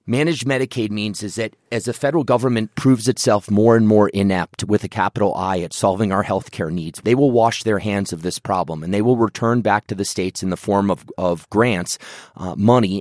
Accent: American